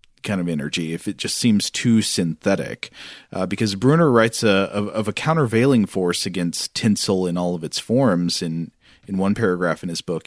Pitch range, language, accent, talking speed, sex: 100-135 Hz, English, American, 195 wpm, male